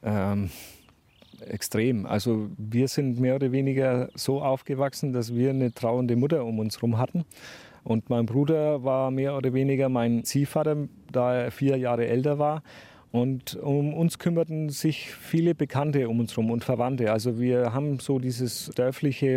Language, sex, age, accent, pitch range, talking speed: German, male, 40-59, German, 115-145 Hz, 160 wpm